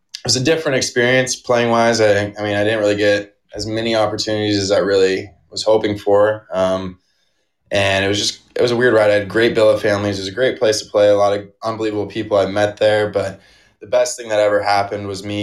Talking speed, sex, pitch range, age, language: 235 wpm, male, 100-105 Hz, 20-39, English